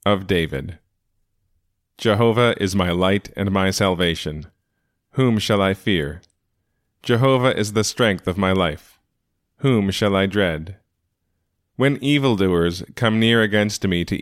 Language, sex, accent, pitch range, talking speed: English, male, American, 90-110 Hz, 130 wpm